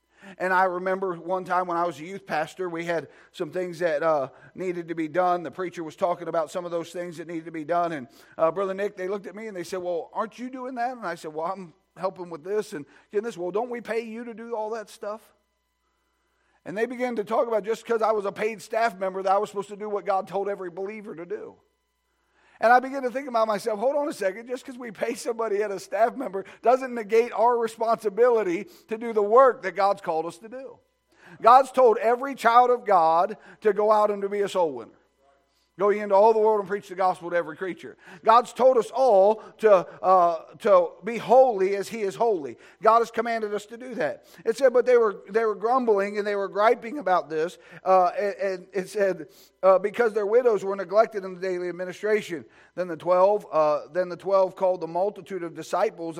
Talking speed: 235 wpm